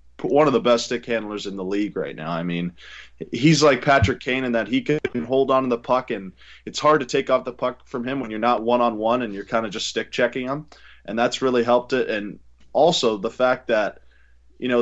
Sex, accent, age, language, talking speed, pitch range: male, American, 20-39, English, 240 wpm, 115-130 Hz